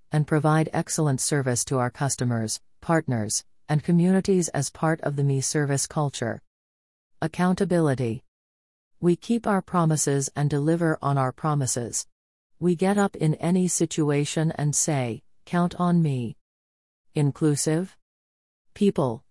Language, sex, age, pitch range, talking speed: English, female, 40-59, 125-160 Hz, 125 wpm